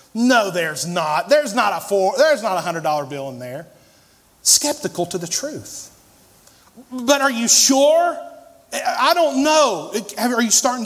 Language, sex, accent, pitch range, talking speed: English, male, American, 160-225 Hz, 155 wpm